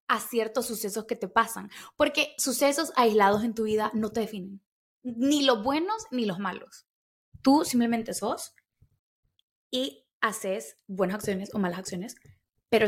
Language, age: Spanish, 10-29